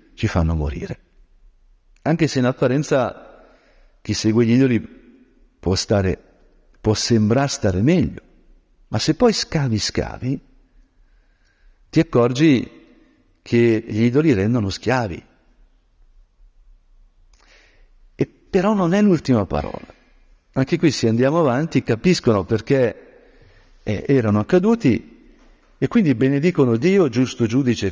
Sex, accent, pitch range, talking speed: male, native, 100-150 Hz, 110 wpm